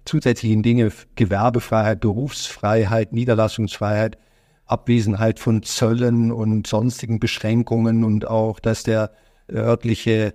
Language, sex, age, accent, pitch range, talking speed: German, male, 50-69, German, 110-120 Hz, 95 wpm